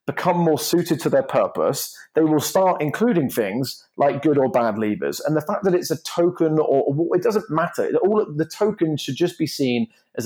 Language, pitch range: English, 120-160 Hz